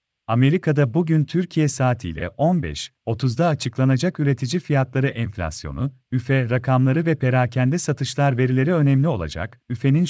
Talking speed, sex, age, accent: 105 wpm, male, 40-59, native